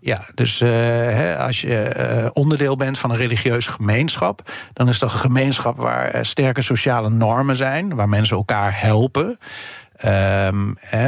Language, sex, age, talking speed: Dutch, male, 50-69, 140 wpm